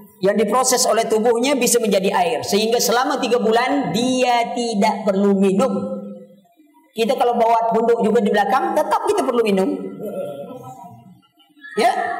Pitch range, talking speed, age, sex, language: 210-340 Hz, 135 wpm, 40-59, female, Indonesian